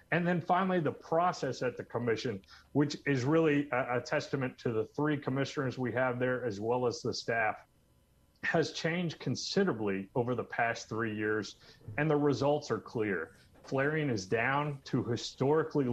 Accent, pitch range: American, 115-145 Hz